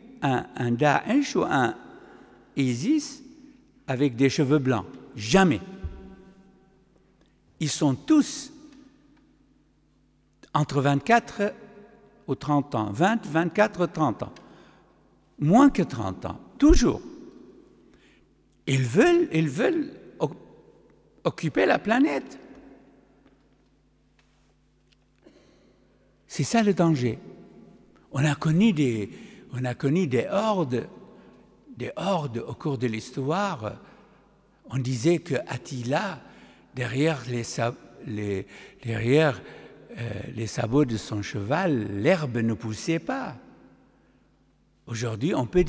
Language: French